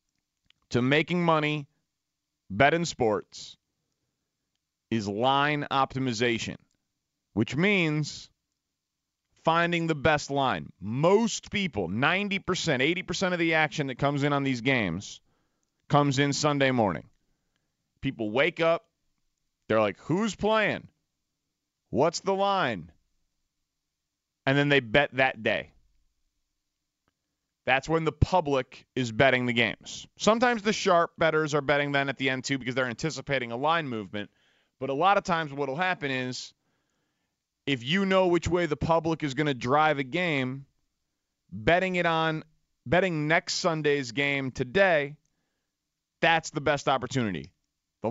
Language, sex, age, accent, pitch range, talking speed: English, male, 30-49, American, 135-165 Hz, 135 wpm